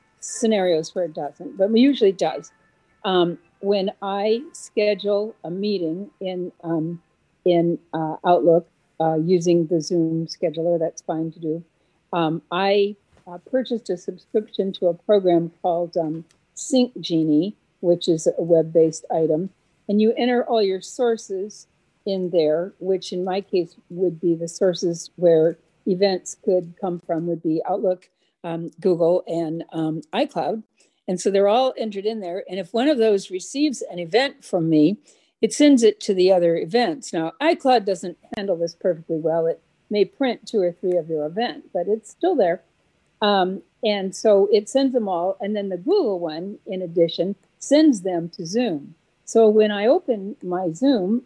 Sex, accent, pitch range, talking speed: female, American, 170-210 Hz, 165 wpm